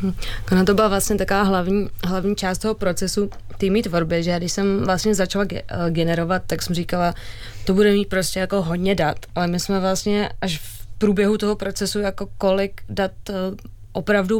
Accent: native